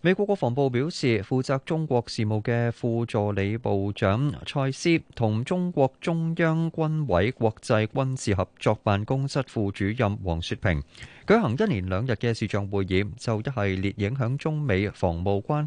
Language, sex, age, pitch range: Chinese, male, 20-39, 100-145 Hz